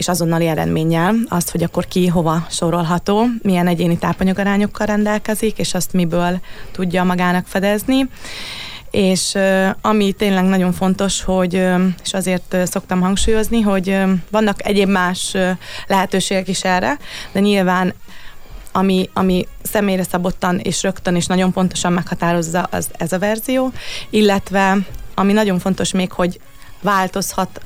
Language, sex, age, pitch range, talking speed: Hungarian, female, 20-39, 180-195 Hz, 130 wpm